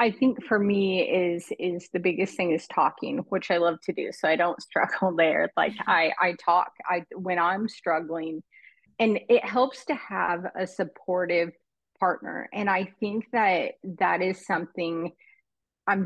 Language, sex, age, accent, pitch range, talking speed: English, female, 30-49, American, 175-210 Hz, 170 wpm